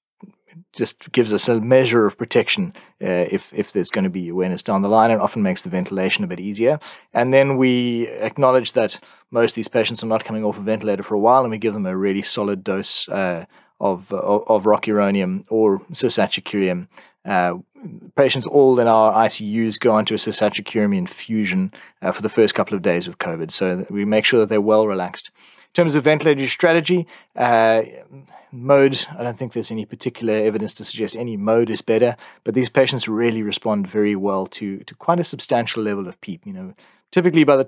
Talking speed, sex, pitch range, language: 205 wpm, male, 105-130 Hz, English